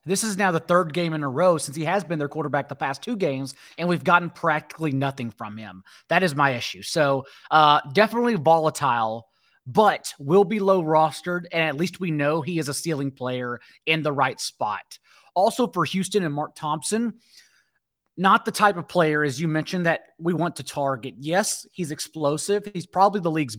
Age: 30-49